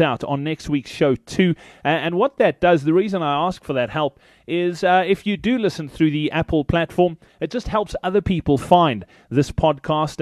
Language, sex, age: English, male, 30-49